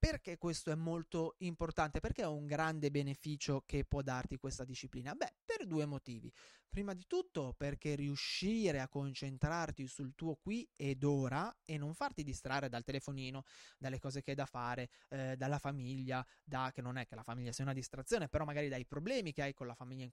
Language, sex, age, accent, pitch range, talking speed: Italian, male, 20-39, native, 135-185 Hz, 195 wpm